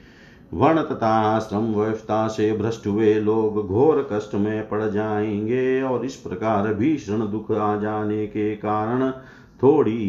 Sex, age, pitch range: male, 50-69, 110-140 Hz